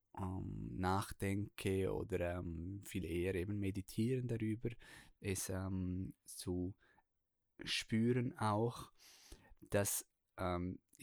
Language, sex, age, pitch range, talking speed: German, male, 20-39, 95-110 Hz, 80 wpm